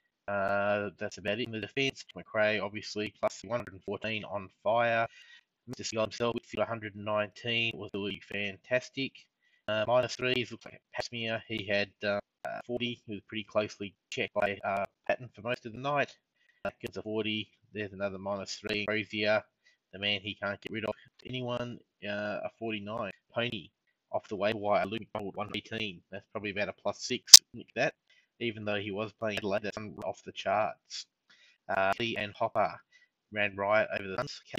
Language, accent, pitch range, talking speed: English, Australian, 100-115 Hz, 175 wpm